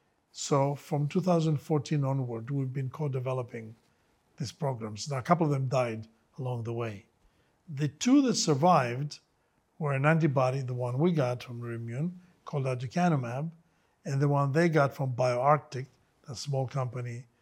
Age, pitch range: 60-79, 125-155 Hz